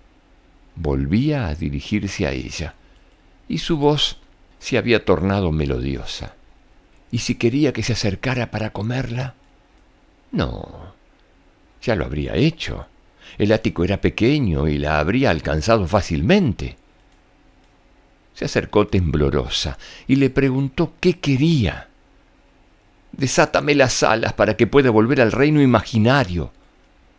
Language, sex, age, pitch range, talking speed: Spanish, male, 60-79, 85-130 Hz, 115 wpm